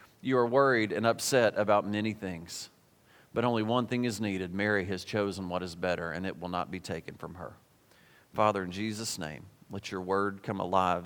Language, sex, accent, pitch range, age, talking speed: English, male, American, 100-135 Hz, 40-59, 200 wpm